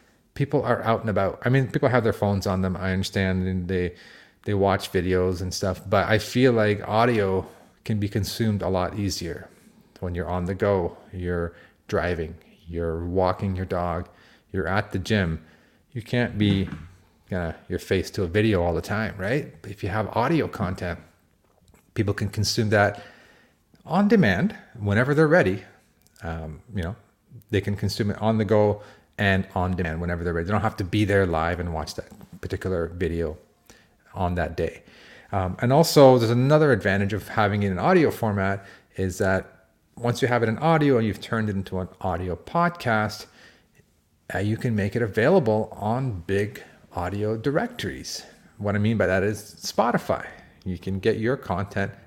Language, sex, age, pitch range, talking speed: English, male, 30-49, 90-110 Hz, 180 wpm